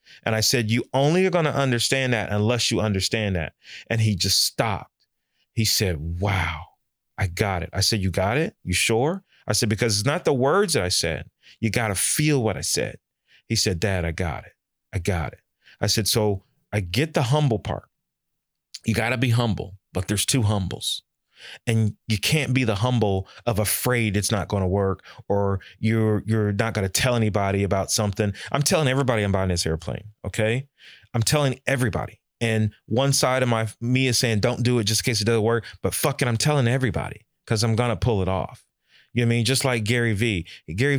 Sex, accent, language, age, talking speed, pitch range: male, American, English, 30-49, 215 wpm, 100-125 Hz